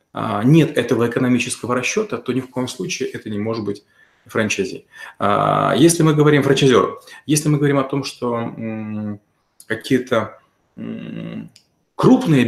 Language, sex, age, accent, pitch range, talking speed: Russian, male, 30-49, native, 120-145 Hz, 125 wpm